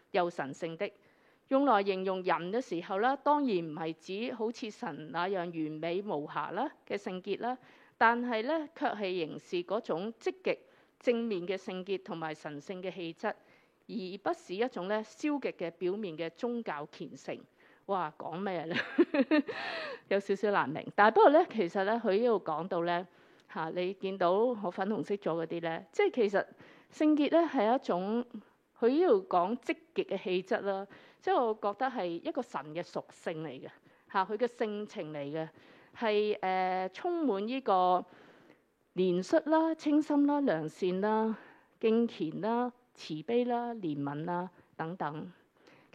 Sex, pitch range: female, 175-245 Hz